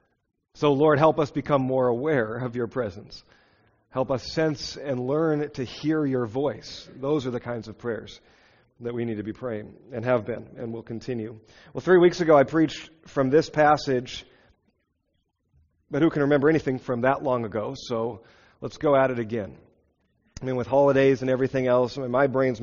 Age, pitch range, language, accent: 40-59, 120-145 Hz, English, American